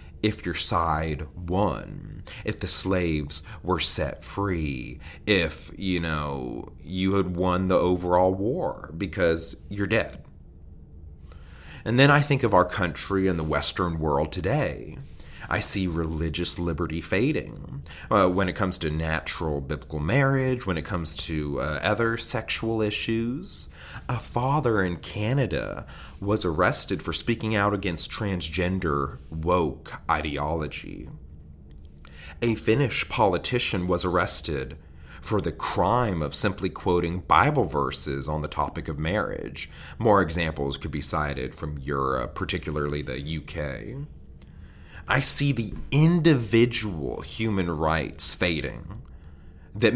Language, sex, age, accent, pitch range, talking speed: English, male, 30-49, American, 75-100 Hz, 125 wpm